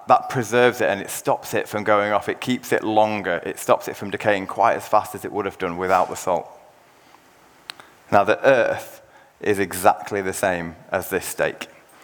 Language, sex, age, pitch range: English, male, 20-39, 95-110 Hz